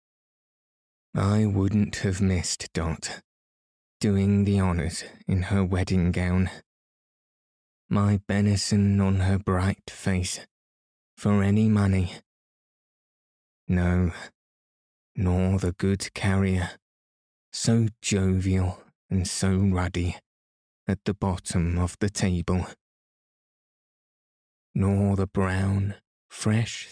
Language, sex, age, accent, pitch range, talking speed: English, male, 20-39, British, 90-105 Hz, 90 wpm